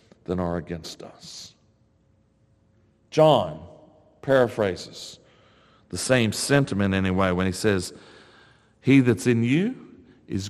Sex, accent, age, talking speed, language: male, American, 50-69, 105 wpm, English